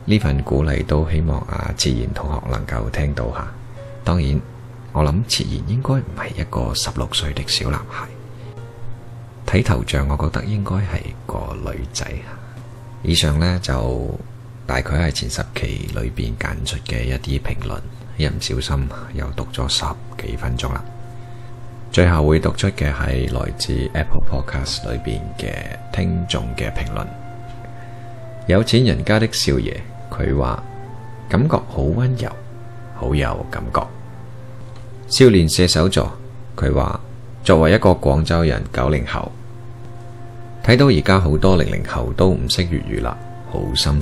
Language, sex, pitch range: Chinese, male, 80-120 Hz